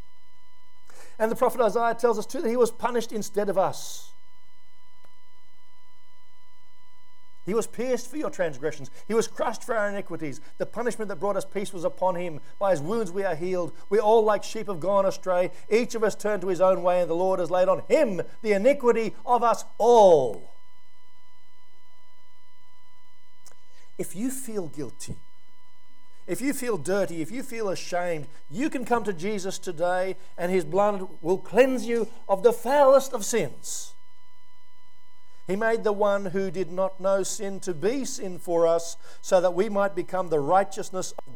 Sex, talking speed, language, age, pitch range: male, 175 wpm, English, 50-69, 165-220 Hz